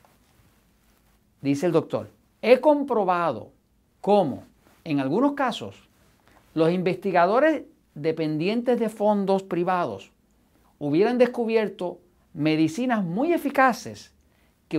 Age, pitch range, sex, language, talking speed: 50-69, 155-235 Hz, male, Spanish, 85 wpm